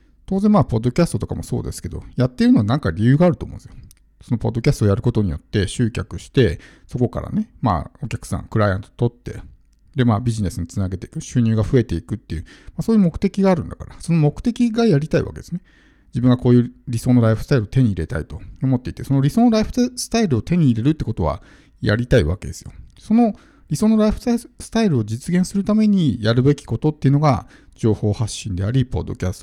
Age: 50-69